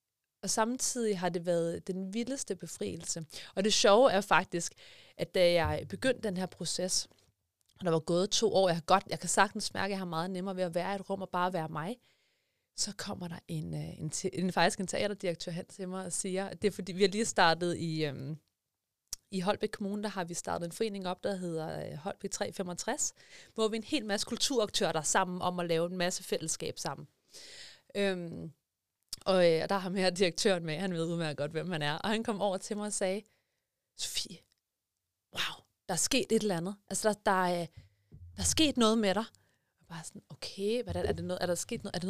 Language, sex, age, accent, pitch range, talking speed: Danish, female, 30-49, native, 170-215 Hz, 210 wpm